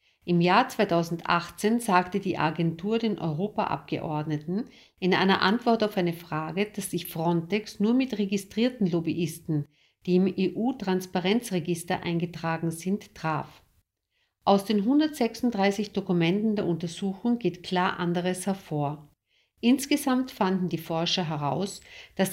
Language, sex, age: German, female, 50-69